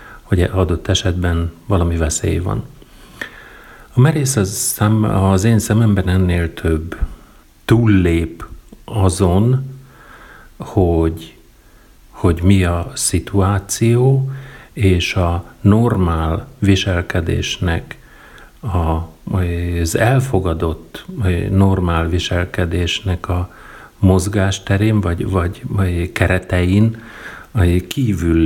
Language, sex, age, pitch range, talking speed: Hungarian, male, 50-69, 85-105 Hz, 70 wpm